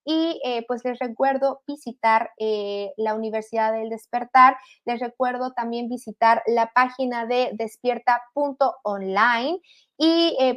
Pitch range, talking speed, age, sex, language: 220-265 Hz, 120 wpm, 20-39, female, Spanish